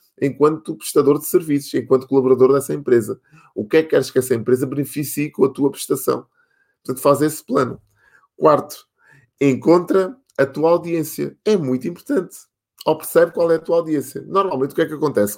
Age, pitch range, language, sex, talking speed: 20-39, 125-160 Hz, Portuguese, male, 175 wpm